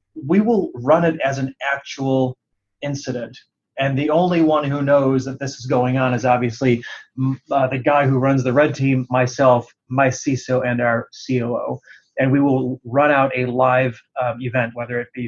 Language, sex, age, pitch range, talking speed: English, male, 30-49, 125-140 Hz, 185 wpm